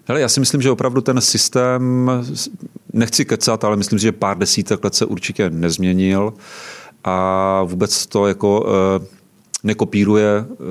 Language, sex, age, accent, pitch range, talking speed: Czech, male, 30-49, native, 95-105 Hz, 135 wpm